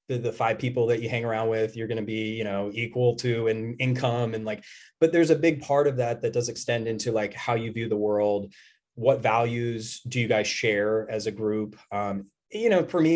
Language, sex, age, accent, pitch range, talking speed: English, male, 20-39, American, 110-135 Hz, 240 wpm